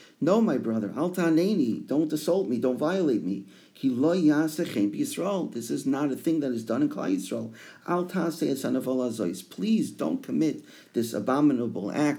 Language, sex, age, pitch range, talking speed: English, male, 50-69, 110-170 Hz, 130 wpm